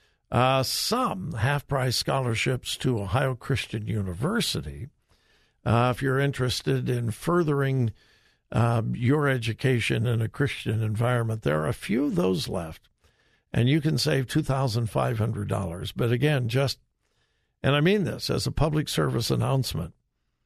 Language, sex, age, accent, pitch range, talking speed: English, male, 60-79, American, 115-145 Hz, 130 wpm